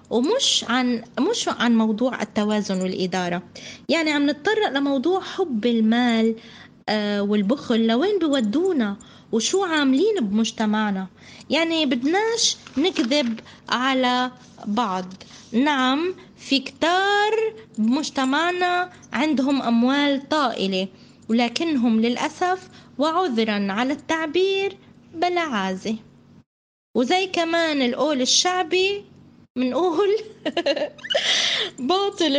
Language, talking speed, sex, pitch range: Arabic, 85 wpm, female, 230-355 Hz